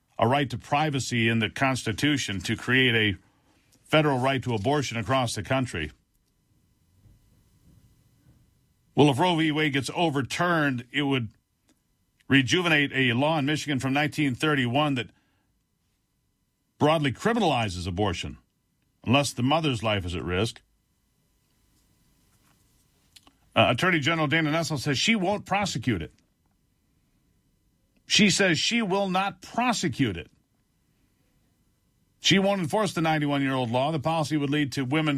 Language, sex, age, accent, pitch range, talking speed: English, male, 50-69, American, 120-155 Hz, 125 wpm